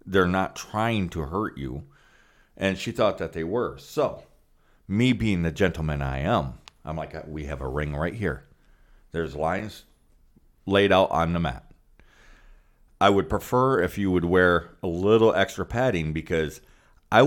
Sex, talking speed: male, 165 wpm